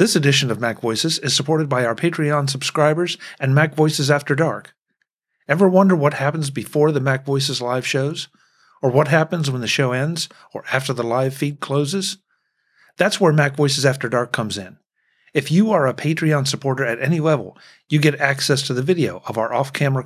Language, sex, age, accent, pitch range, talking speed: English, male, 50-69, American, 130-165 Hz, 195 wpm